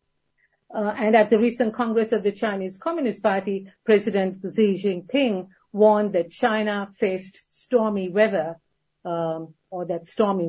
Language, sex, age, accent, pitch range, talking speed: English, female, 50-69, Indian, 180-220 Hz, 135 wpm